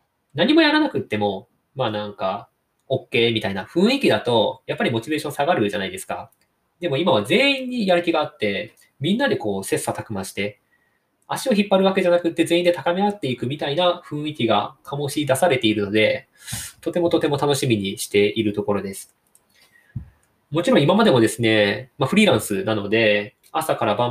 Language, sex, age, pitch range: Japanese, male, 20-39, 105-175 Hz